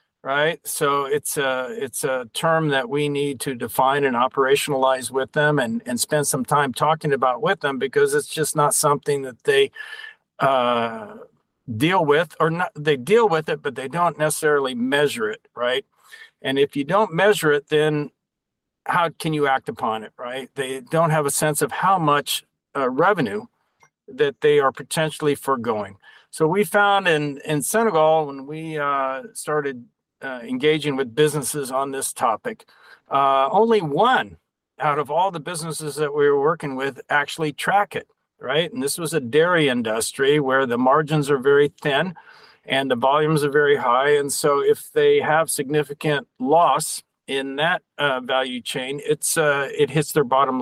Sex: male